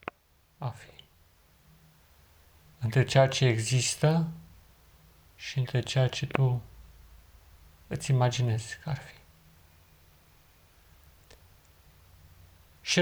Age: 40-59